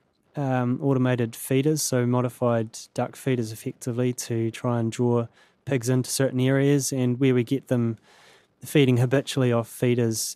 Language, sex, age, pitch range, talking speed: English, male, 20-39, 115-130 Hz, 145 wpm